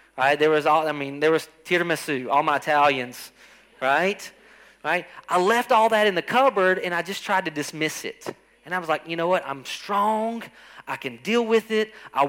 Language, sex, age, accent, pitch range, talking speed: English, male, 30-49, American, 140-190 Hz, 210 wpm